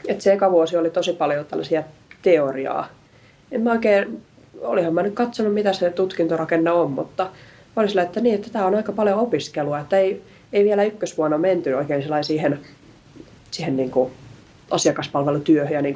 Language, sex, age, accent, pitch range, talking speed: Finnish, female, 30-49, native, 150-195 Hz, 160 wpm